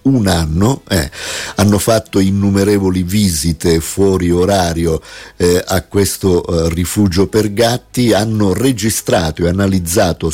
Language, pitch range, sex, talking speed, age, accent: Italian, 90-110 Hz, male, 115 wpm, 50-69, native